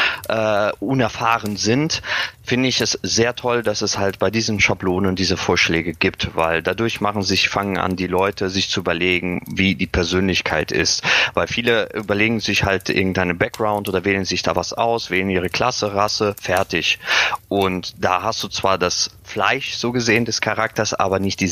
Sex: male